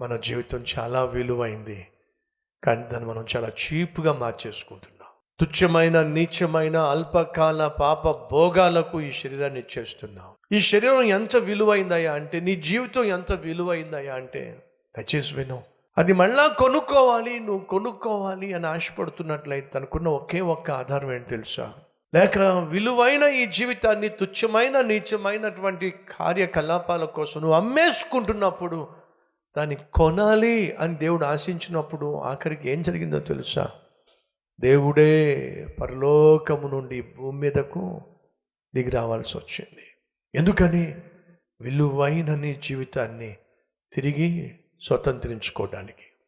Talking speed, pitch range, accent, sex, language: 100 wpm, 135-185 Hz, native, male, Telugu